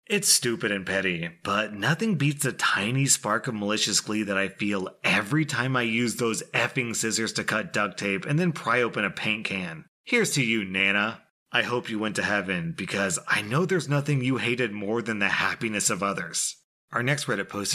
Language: English